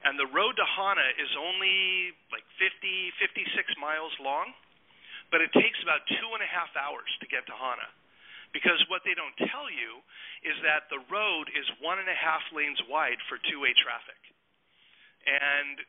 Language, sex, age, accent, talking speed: English, male, 40-59, American, 175 wpm